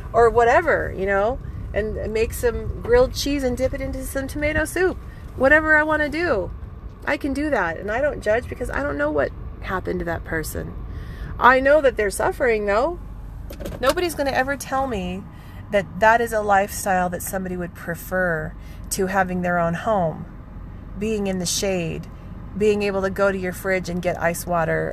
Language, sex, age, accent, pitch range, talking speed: English, female, 30-49, American, 180-265 Hz, 190 wpm